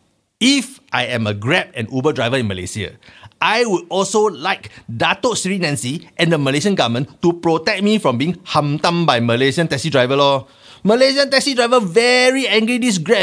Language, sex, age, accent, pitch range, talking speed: English, male, 30-49, Malaysian, 125-195 Hz, 175 wpm